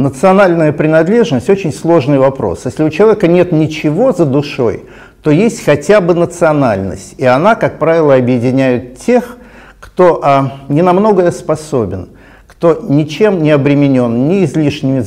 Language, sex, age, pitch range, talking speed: Russian, male, 50-69, 135-180 Hz, 135 wpm